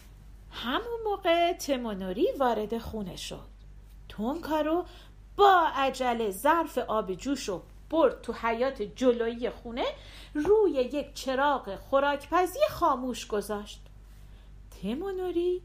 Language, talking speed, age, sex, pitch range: Persian, 90 wpm, 40-59, female, 220-350 Hz